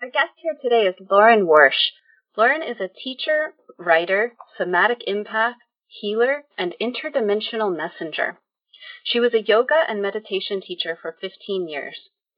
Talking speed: 135 wpm